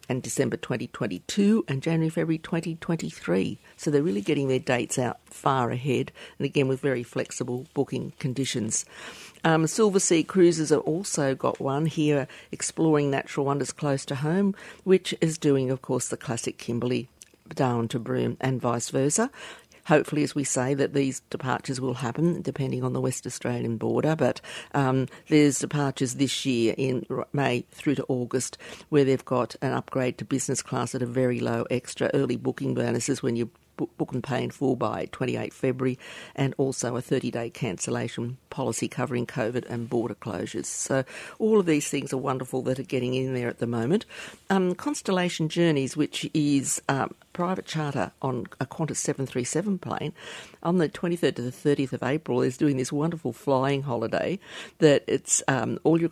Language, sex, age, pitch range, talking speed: English, female, 50-69, 125-155 Hz, 175 wpm